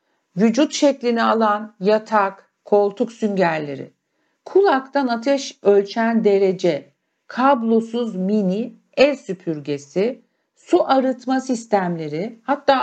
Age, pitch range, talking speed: 50-69, 180-255 Hz, 85 wpm